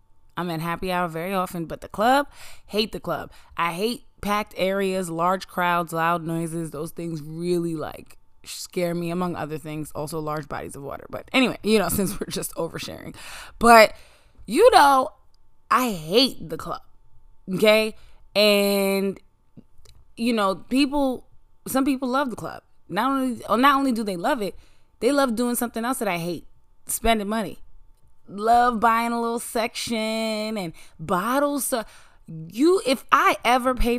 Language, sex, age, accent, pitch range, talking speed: English, female, 20-39, American, 175-230 Hz, 160 wpm